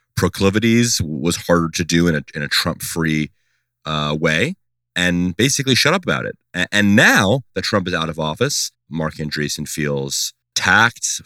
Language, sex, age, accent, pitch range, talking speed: English, male, 30-49, American, 80-95 Hz, 165 wpm